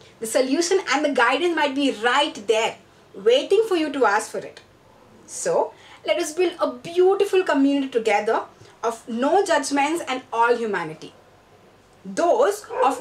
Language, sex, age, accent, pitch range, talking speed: English, female, 20-39, Indian, 255-405 Hz, 150 wpm